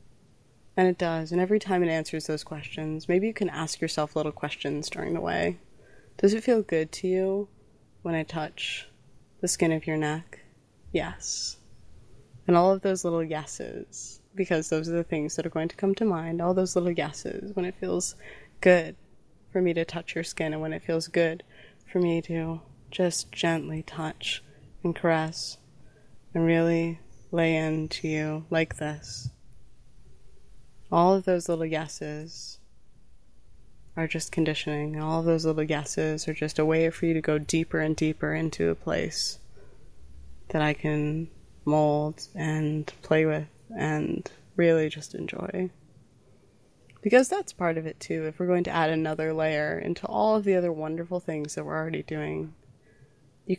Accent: American